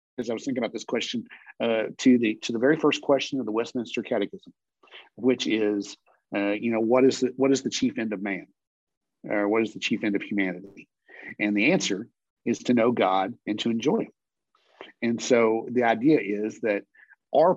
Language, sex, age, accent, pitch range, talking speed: English, male, 50-69, American, 105-135 Hz, 210 wpm